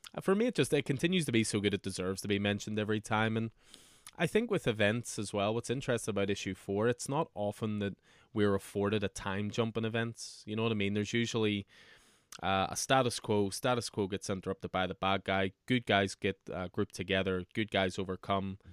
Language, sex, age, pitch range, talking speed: English, male, 20-39, 95-115 Hz, 220 wpm